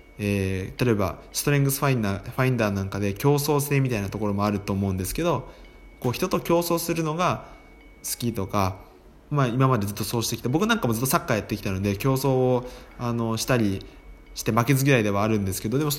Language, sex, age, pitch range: Japanese, male, 20-39, 100-145 Hz